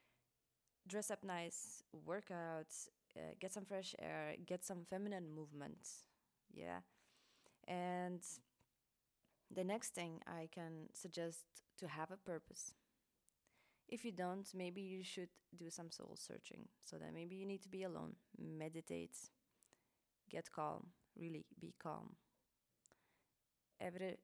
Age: 20-39